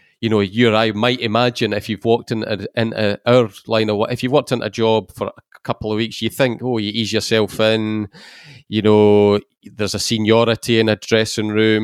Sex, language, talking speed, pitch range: male, English, 220 wpm, 100-115 Hz